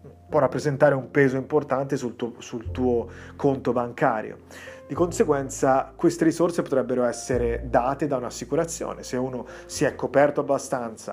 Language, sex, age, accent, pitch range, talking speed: Italian, male, 30-49, native, 115-135 Hz, 140 wpm